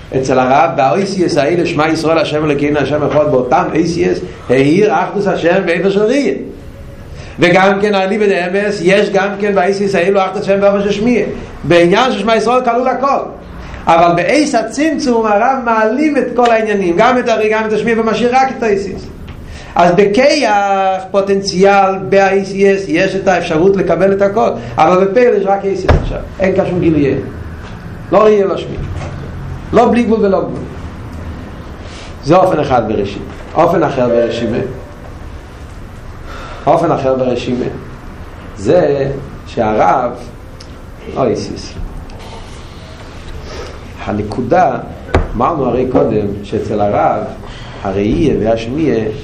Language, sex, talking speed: Hebrew, male, 120 wpm